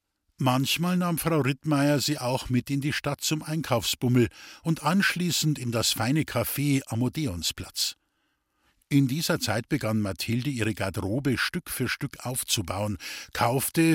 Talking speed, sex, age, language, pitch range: 135 wpm, male, 50-69, German, 110-155 Hz